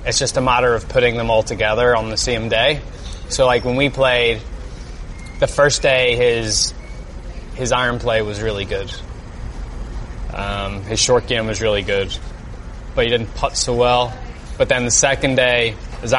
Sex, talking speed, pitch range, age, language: male, 175 wpm, 105-130 Hz, 20-39, English